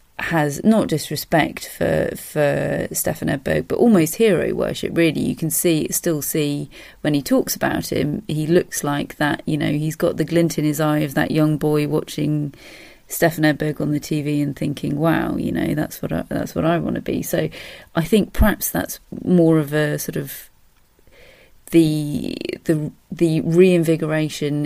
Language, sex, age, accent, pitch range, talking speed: English, female, 30-49, British, 150-190 Hz, 180 wpm